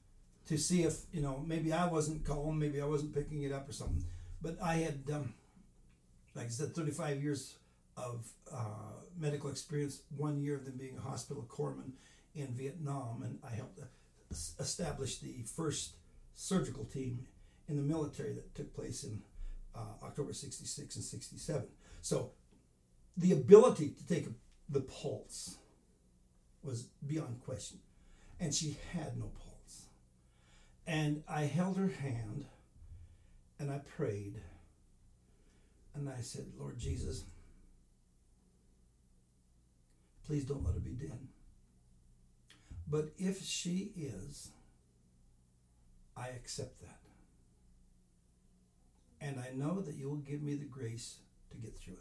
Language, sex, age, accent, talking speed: English, male, 60-79, American, 130 wpm